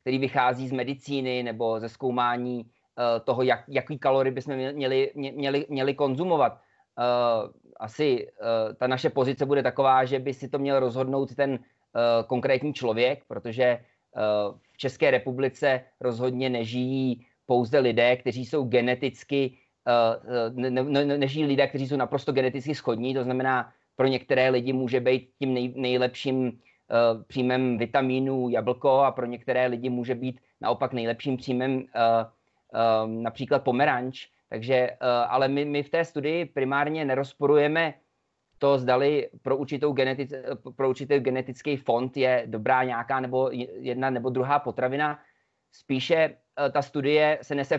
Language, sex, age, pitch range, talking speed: Slovak, male, 20-39, 125-140 Hz, 135 wpm